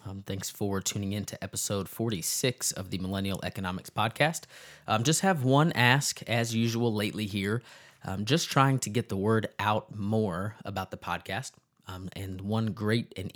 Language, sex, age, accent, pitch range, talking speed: English, male, 20-39, American, 95-115 Hz, 175 wpm